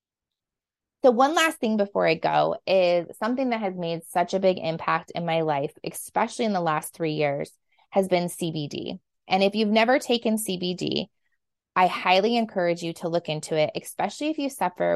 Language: English